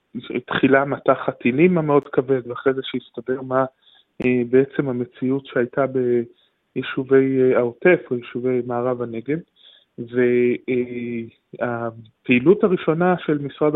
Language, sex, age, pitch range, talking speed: Hebrew, male, 20-39, 125-145 Hz, 95 wpm